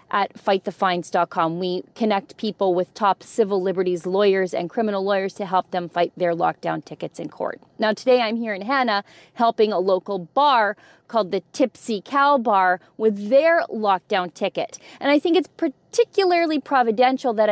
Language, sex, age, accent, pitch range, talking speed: English, female, 30-49, American, 195-270 Hz, 165 wpm